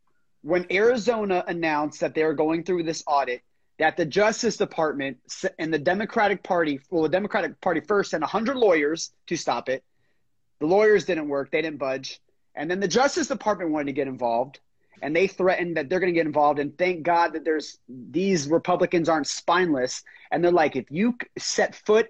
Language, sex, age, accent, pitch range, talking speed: English, male, 30-49, American, 160-215 Hz, 190 wpm